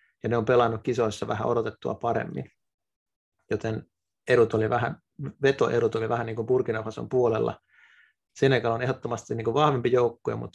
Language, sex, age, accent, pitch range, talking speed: Finnish, male, 30-49, native, 115-130 Hz, 150 wpm